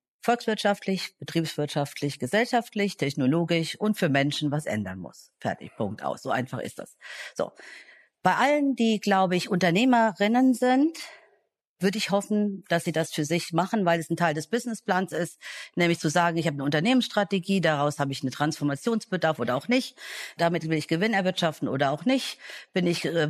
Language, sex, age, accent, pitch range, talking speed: German, female, 50-69, German, 140-190 Hz, 175 wpm